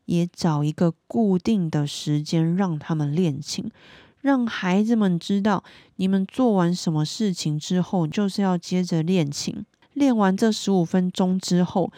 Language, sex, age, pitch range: Chinese, female, 20-39, 160-210 Hz